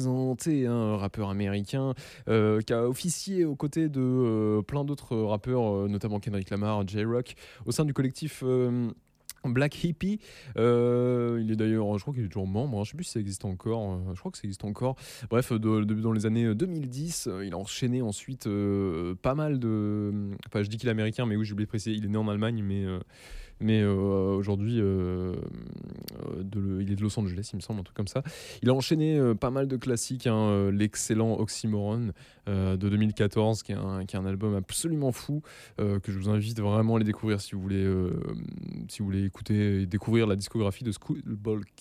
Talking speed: 220 wpm